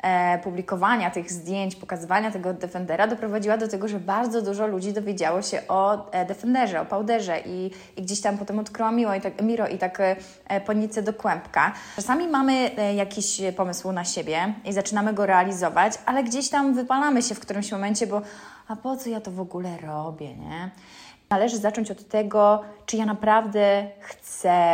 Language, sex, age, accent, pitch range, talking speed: Polish, female, 20-39, native, 185-220 Hz, 165 wpm